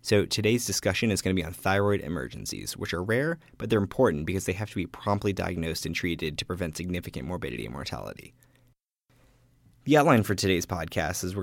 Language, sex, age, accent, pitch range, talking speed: English, male, 20-39, American, 90-120 Hz, 200 wpm